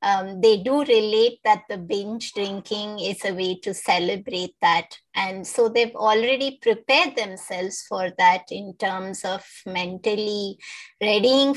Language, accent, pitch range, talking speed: English, Indian, 205-270 Hz, 140 wpm